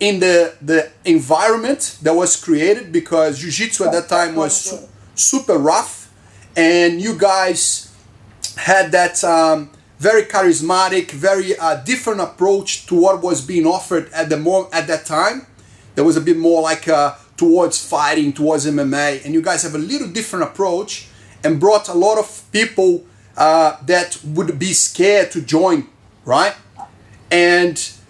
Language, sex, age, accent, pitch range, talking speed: English, male, 30-49, Brazilian, 155-195 Hz, 155 wpm